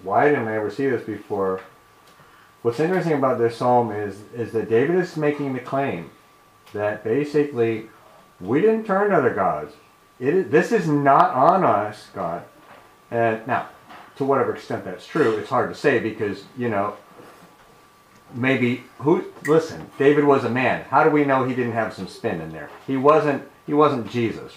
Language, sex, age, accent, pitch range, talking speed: English, male, 40-59, American, 115-155 Hz, 180 wpm